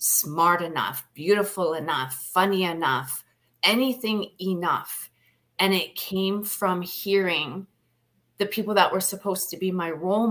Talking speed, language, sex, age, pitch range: 130 wpm, English, female, 30-49, 165-195 Hz